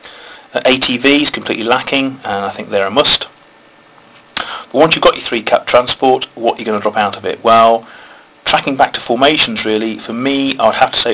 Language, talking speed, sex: English, 200 wpm, male